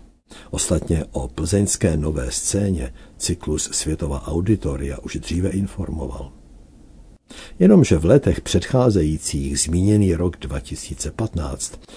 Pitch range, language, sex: 75-100 Hz, Czech, male